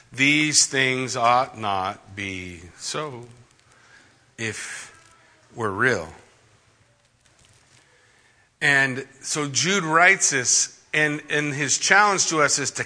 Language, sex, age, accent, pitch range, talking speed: English, male, 50-69, American, 120-155 Hz, 105 wpm